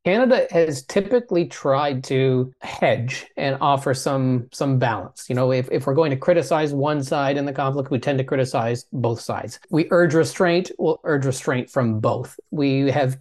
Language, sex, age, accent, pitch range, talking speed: English, male, 30-49, American, 130-170 Hz, 180 wpm